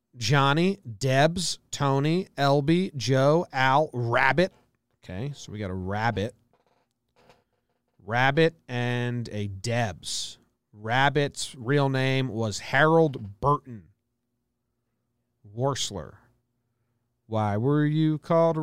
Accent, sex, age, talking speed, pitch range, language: American, male, 30-49, 90 wpm, 120-145 Hz, English